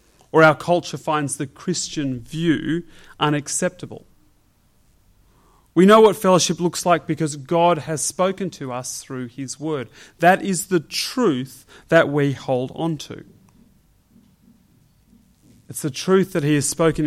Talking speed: 135 wpm